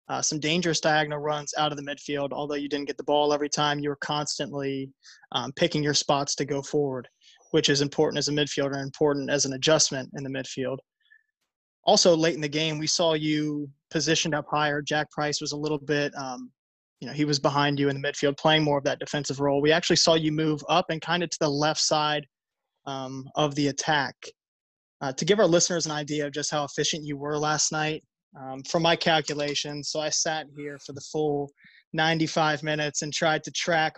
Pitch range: 145-155 Hz